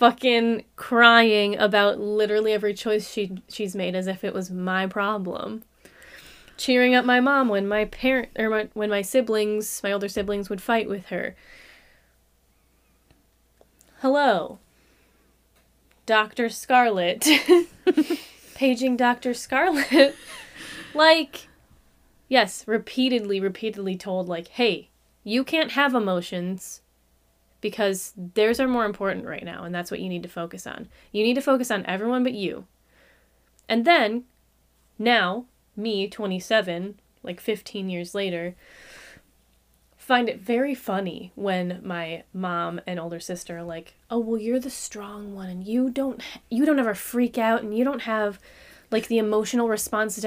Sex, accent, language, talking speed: female, American, English, 140 wpm